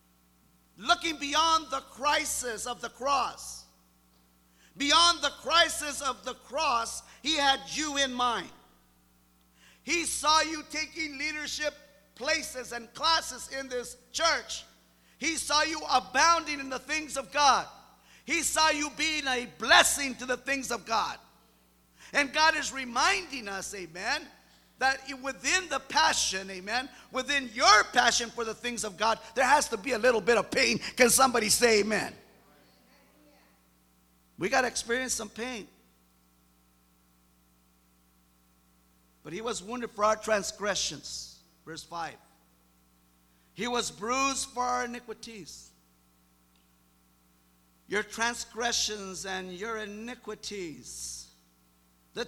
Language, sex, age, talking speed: English, male, 50-69, 125 wpm